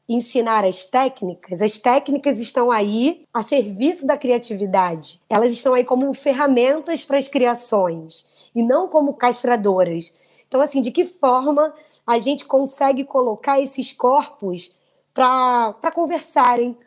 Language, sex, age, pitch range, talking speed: Portuguese, female, 20-39, 230-280 Hz, 130 wpm